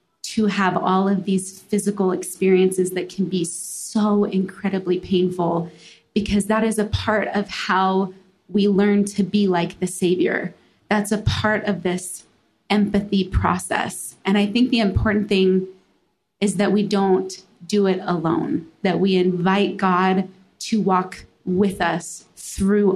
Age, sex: 20-39, female